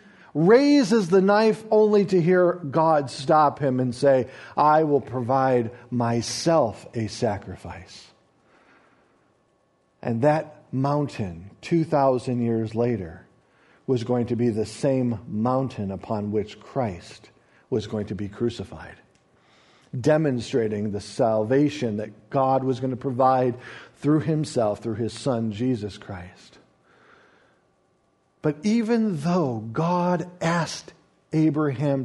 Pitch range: 120-185 Hz